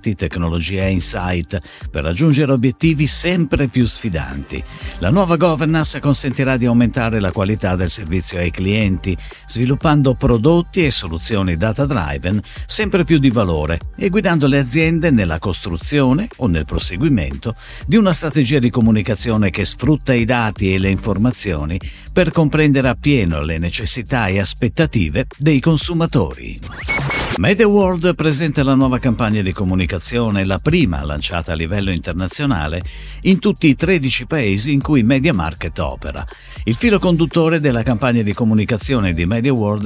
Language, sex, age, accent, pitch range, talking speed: Italian, male, 50-69, native, 95-150 Hz, 135 wpm